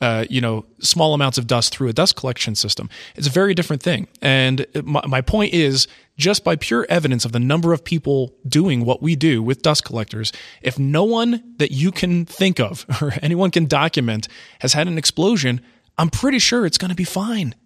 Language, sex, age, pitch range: English, male, 30-49, 120-160 Hz